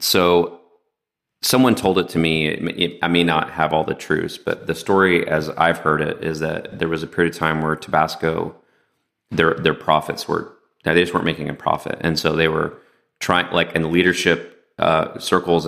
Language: English